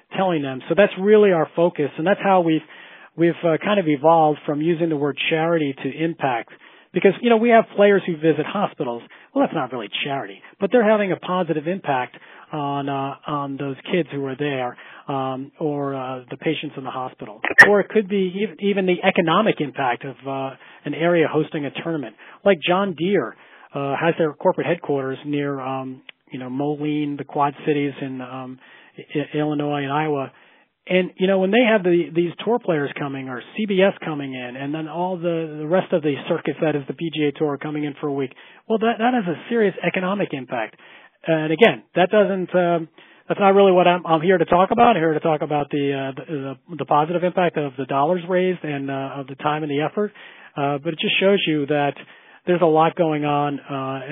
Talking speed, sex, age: 210 wpm, male, 40-59